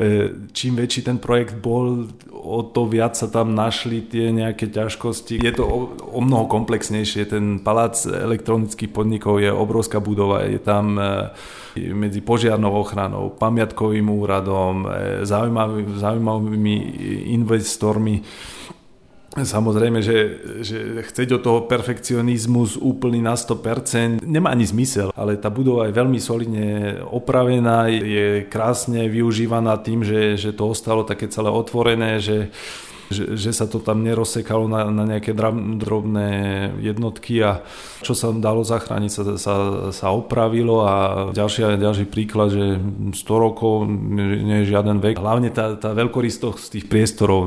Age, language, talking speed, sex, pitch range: 30-49, Czech, 140 wpm, male, 100-115 Hz